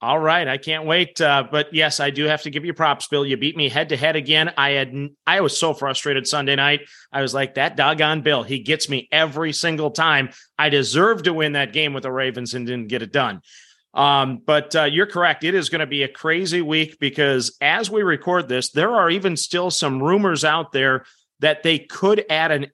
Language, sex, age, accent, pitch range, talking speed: English, male, 30-49, American, 140-170 Hz, 225 wpm